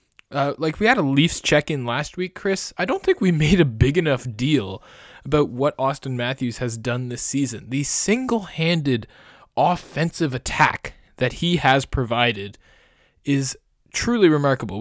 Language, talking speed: English, 155 wpm